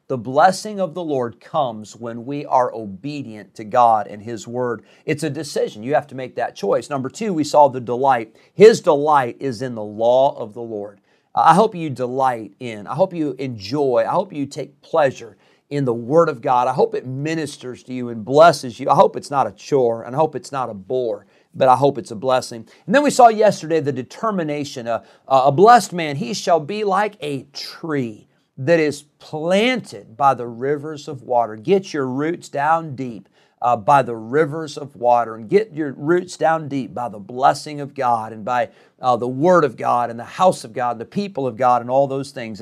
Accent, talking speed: American, 215 wpm